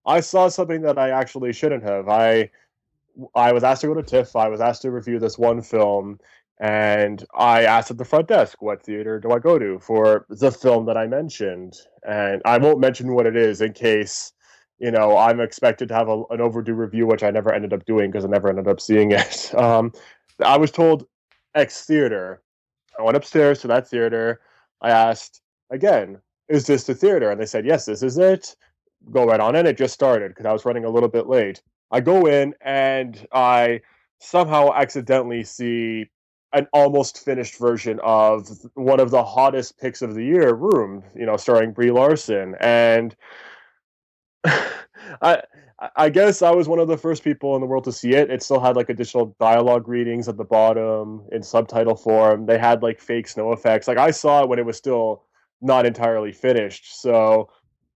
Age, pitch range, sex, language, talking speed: 20-39, 110-130 Hz, male, English, 200 wpm